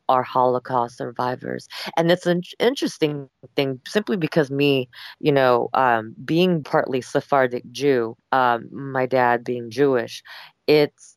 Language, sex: English, female